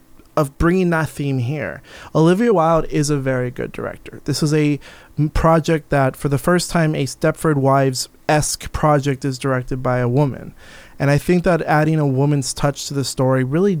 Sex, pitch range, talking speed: male, 130-150 Hz, 185 wpm